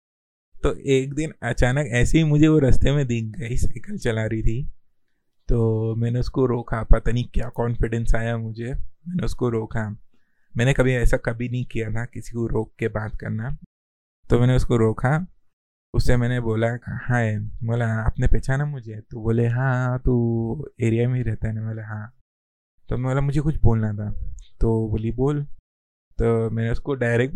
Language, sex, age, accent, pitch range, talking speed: Hindi, male, 20-39, native, 110-125 Hz, 170 wpm